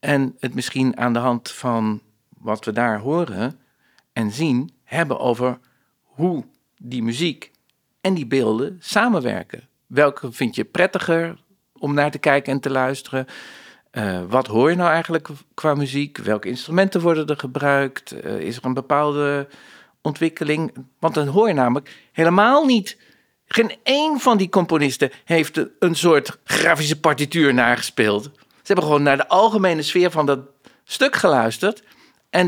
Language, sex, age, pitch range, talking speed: Dutch, male, 50-69, 130-180 Hz, 150 wpm